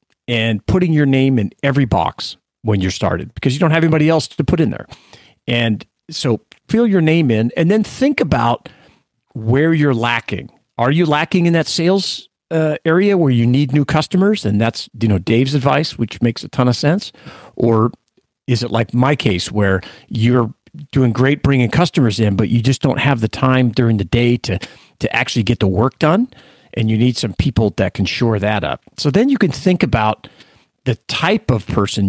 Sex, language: male, English